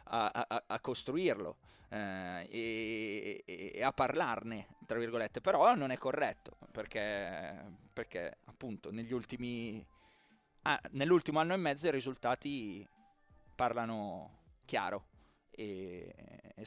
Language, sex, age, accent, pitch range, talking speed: Italian, male, 30-49, native, 110-145 Hz, 110 wpm